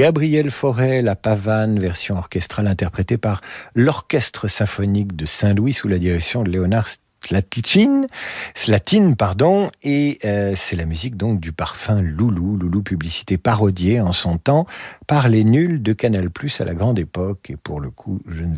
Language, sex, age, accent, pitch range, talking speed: French, male, 50-69, French, 95-125 Hz, 160 wpm